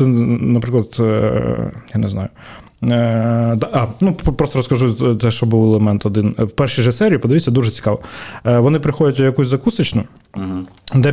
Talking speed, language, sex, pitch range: 140 wpm, Ukrainian, male, 120-155 Hz